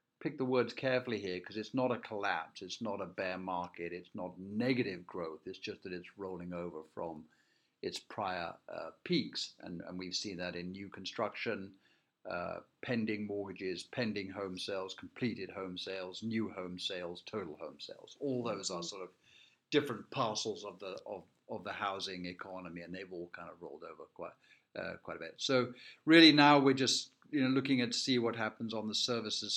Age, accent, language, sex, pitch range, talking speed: 50-69, British, English, male, 95-125 Hz, 190 wpm